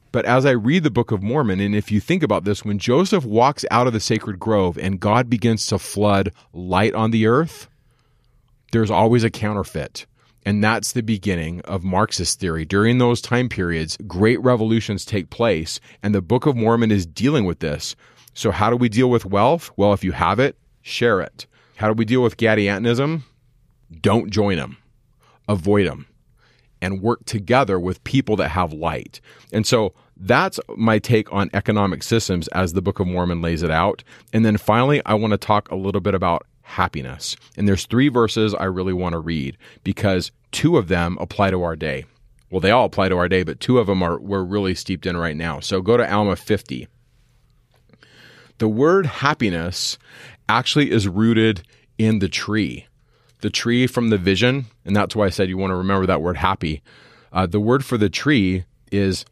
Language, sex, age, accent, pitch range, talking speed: English, male, 30-49, American, 95-120 Hz, 195 wpm